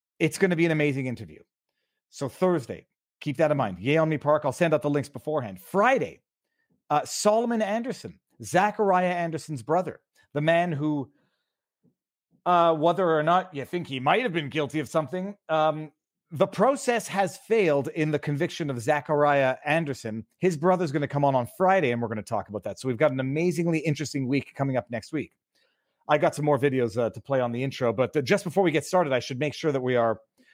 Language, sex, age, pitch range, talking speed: English, male, 40-59, 145-185 Hz, 205 wpm